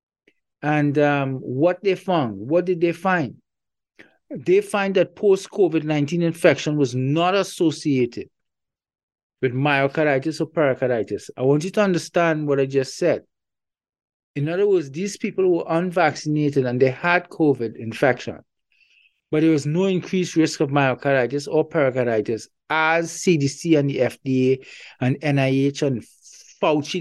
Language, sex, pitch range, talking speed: English, male, 140-180 Hz, 135 wpm